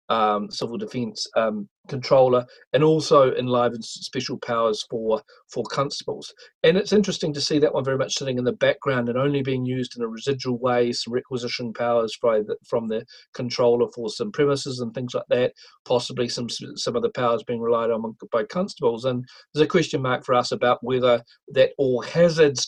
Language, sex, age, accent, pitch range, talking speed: English, male, 40-59, South African, 120-150 Hz, 190 wpm